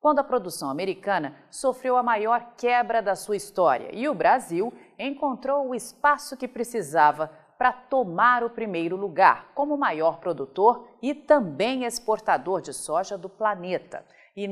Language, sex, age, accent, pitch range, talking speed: Portuguese, female, 40-59, Brazilian, 180-250 Hz, 145 wpm